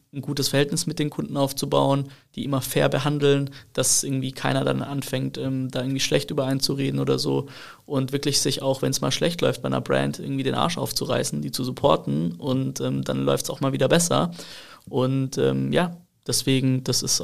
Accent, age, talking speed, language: German, 20-39, 200 wpm, German